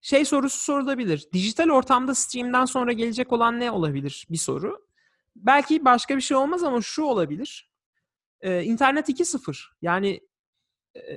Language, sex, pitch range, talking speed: Turkish, male, 160-260 Hz, 140 wpm